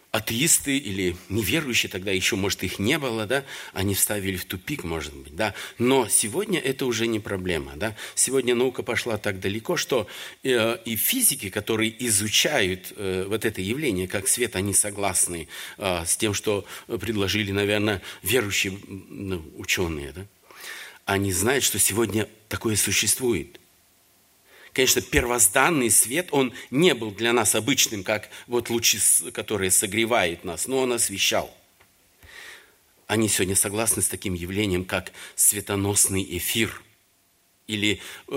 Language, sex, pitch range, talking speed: Russian, male, 95-115 Hz, 130 wpm